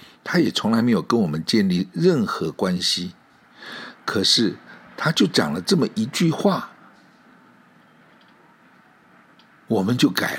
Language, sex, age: Chinese, male, 60-79